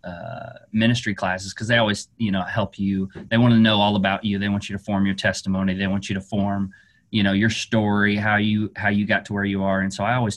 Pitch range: 100-115 Hz